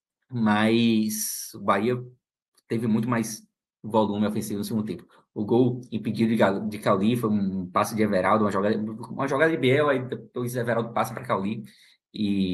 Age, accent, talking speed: 20-39, Brazilian, 165 wpm